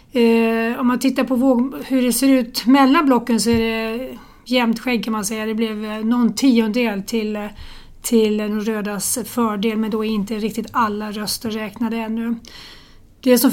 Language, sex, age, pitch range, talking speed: Swedish, female, 40-59, 220-250 Hz, 170 wpm